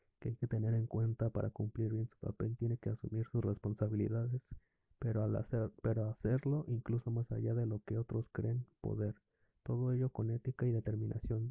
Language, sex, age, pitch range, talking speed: Spanish, male, 30-49, 110-125 Hz, 175 wpm